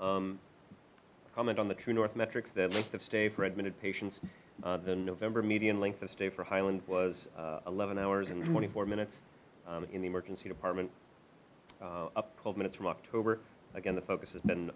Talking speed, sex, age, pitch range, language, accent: 190 wpm, male, 30-49, 80-95 Hz, English, American